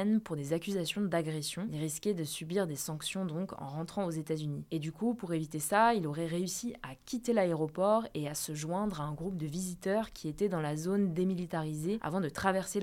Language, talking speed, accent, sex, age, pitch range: French, 215 wpm, French, female, 20-39, 160-200 Hz